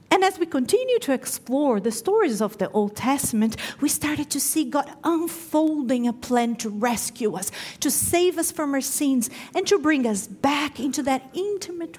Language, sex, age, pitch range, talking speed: English, female, 40-59, 215-315 Hz, 185 wpm